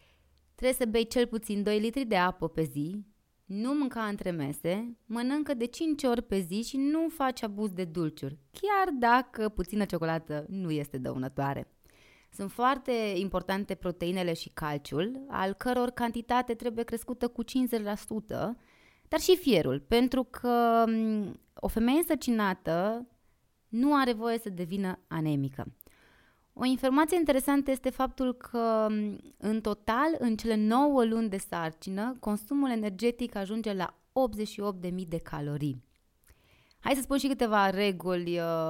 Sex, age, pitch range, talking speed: female, 20-39, 170-245 Hz, 135 wpm